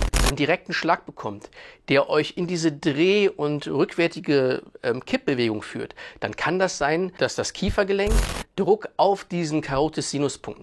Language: German